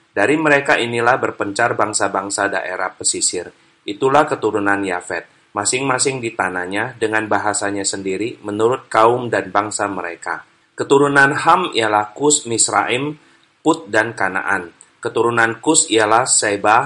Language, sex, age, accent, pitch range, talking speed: Indonesian, male, 30-49, native, 105-135 Hz, 115 wpm